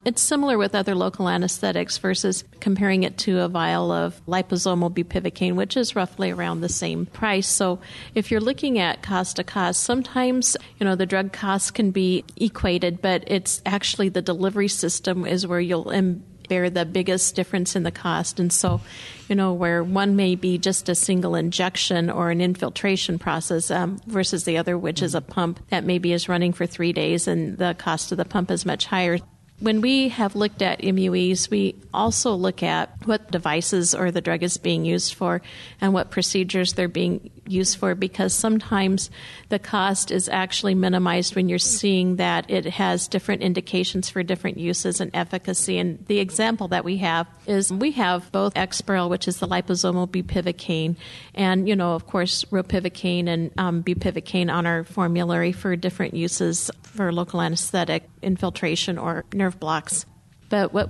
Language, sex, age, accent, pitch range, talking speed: English, female, 50-69, American, 175-195 Hz, 180 wpm